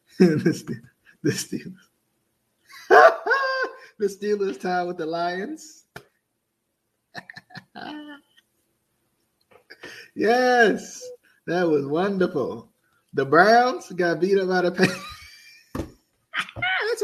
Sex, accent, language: male, American, English